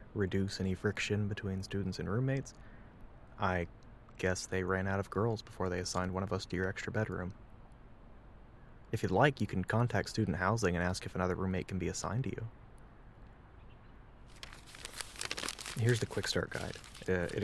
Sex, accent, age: male, American, 20-39